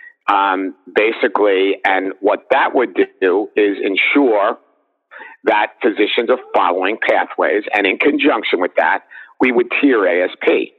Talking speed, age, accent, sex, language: 130 wpm, 50-69, American, male, English